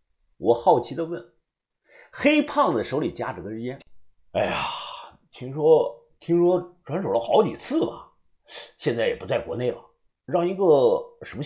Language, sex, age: Chinese, male, 50-69